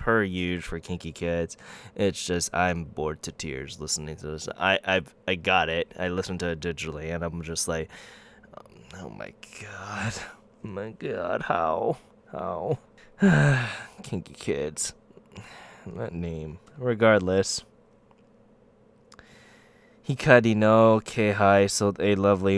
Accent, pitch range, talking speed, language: American, 90-110 Hz, 150 wpm, English